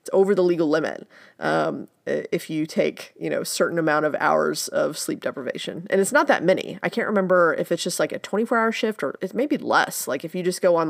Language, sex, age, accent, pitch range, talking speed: English, female, 30-49, American, 170-235 Hz, 230 wpm